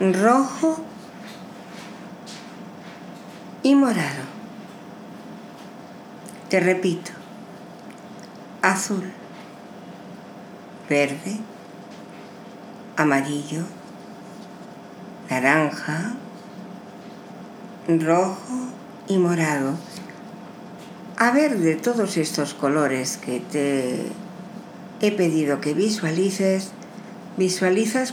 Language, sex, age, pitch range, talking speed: Spanish, female, 60-79, 170-225 Hz, 55 wpm